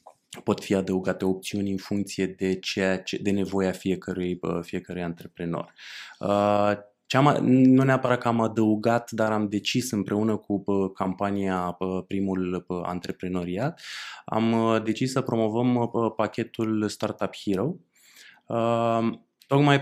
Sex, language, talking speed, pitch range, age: male, Romanian, 105 wpm, 100-120 Hz, 20-39